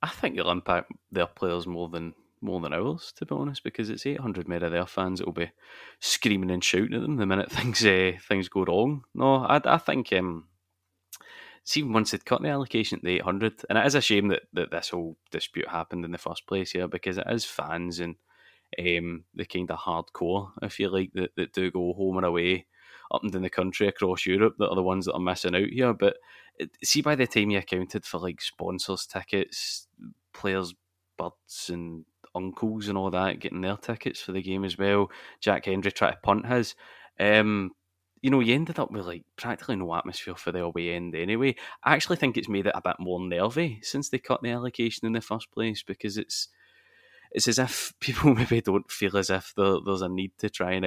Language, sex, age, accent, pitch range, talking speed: English, male, 20-39, British, 90-110 Hz, 220 wpm